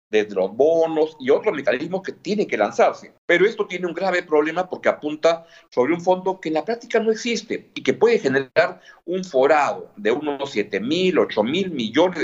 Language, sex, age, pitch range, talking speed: Spanish, male, 50-69, 135-190 Hz, 195 wpm